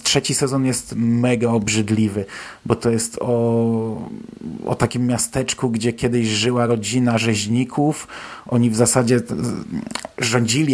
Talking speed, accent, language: 115 wpm, native, Polish